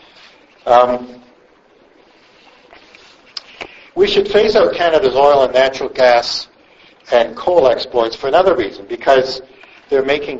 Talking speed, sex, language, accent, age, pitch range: 110 wpm, male, English, American, 60-79, 125-165 Hz